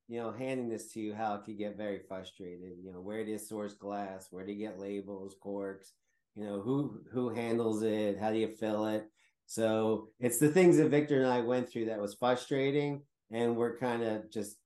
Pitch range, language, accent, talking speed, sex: 115-145 Hz, English, American, 220 wpm, male